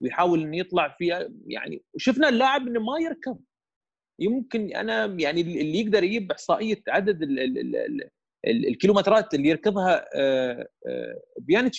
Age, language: 30-49, Arabic